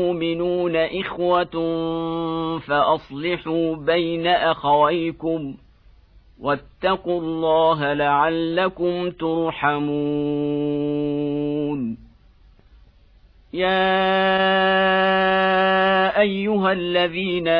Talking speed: 40 wpm